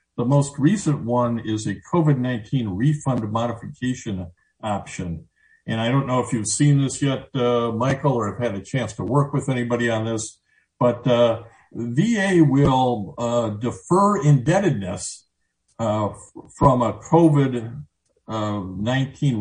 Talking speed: 140 wpm